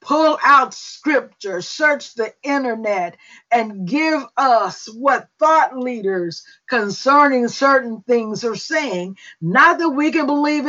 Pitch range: 245-305 Hz